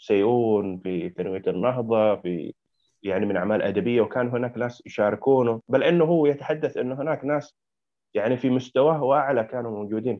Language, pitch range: Arabic, 110-145 Hz